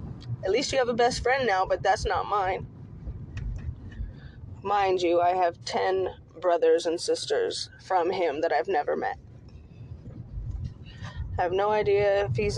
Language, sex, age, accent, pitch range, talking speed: English, female, 20-39, American, 180-270 Hz, 155 wpm